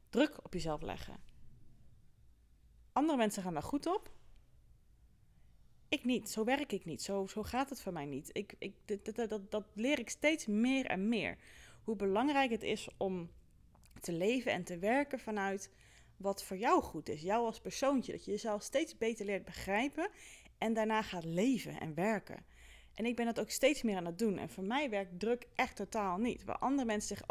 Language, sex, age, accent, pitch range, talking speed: Dutch, female, 30-49, Dutch, 195-255 Hz, 185 wpm